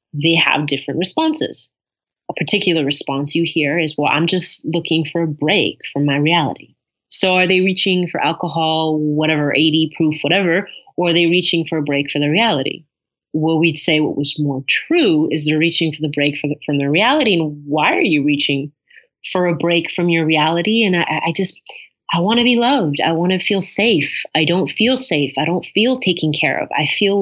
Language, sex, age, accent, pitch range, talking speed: English, female, 30-49, American, 155-190 Hz, 205 wpm